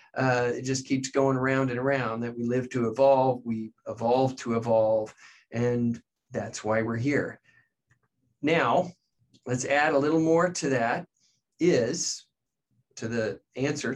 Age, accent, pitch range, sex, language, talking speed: 40-59, American, 120-150 Hz, male, English, 145 wpm